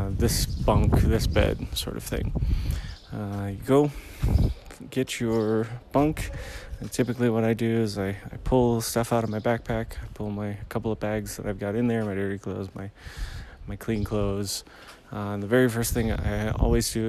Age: 20-39